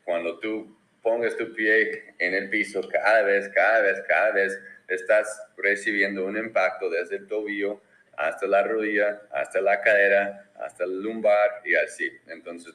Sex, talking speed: male, 155 wpm